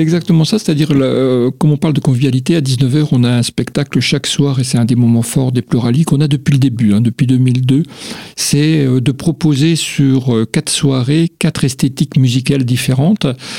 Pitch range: 130-160 Hz